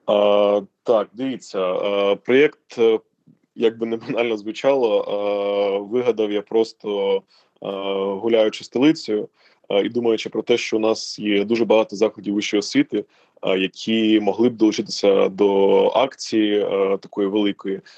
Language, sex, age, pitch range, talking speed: Ukrainian, male, 20-39, 100-115 Hz, 130 wpm